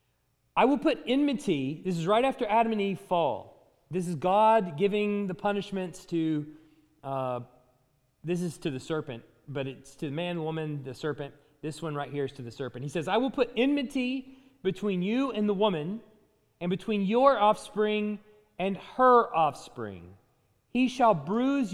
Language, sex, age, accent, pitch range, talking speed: English, male, 30-49, American, 155-230 Hz, 170 wpm